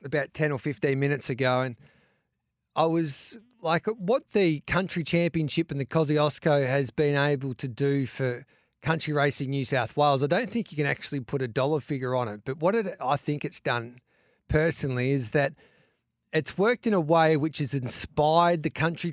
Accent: Australian